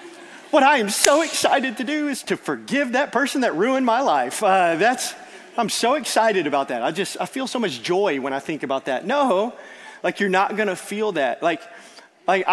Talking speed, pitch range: 210 wpm, 170-220 Hz